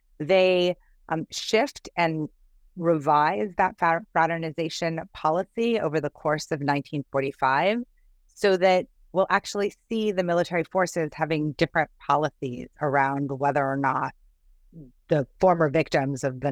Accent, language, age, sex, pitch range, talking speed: American, English, 30-49, female, 145-190 Hz, 120 wpm